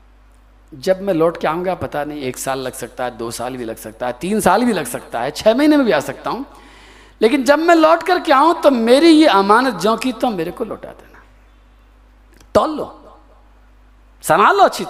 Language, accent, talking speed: Hindi, native, 220 wpm